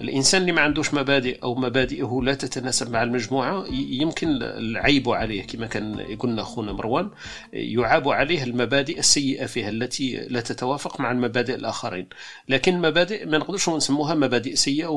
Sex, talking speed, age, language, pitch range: male, 150 wpm, 40-59, Arabic, 120-140 Hz